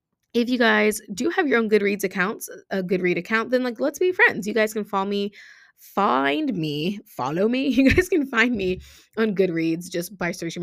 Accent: American